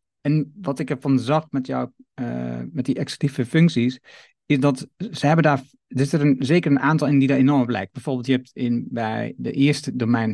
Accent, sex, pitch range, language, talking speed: Dutch, male, 125-145 Hz, Dutch, 215 wpm